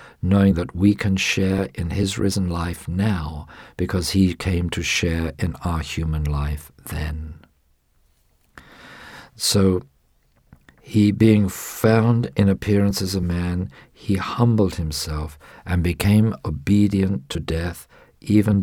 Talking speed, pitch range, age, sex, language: 120 wpm, 80-95 Hz, 50-69, male, English